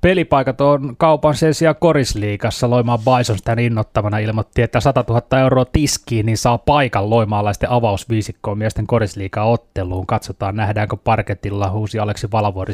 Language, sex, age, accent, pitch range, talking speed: Finnish, male, 20-39, native, 110-130 Hz, 130 wpm